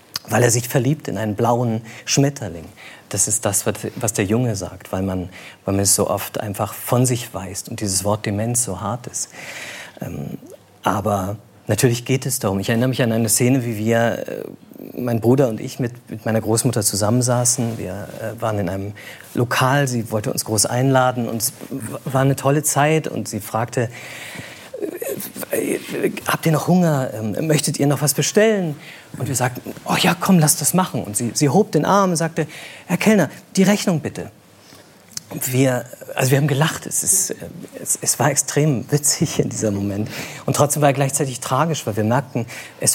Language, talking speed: German, 175 wpm